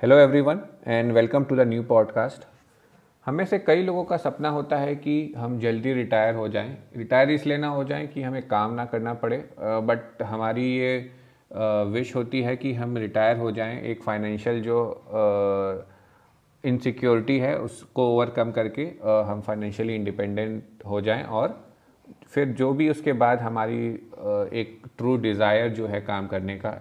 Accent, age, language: native, 30-49, Hindi